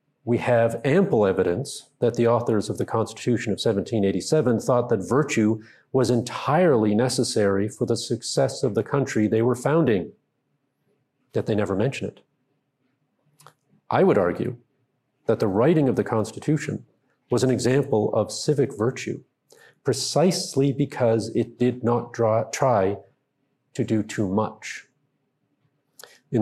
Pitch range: 110-140 Hz